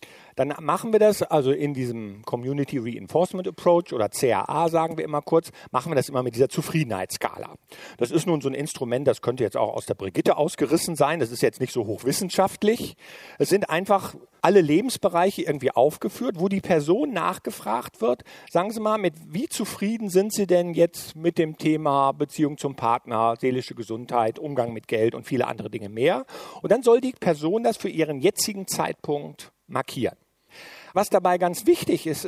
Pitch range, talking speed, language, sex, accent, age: 140-190 Hz, 180 wpm, German, male, German, 50-69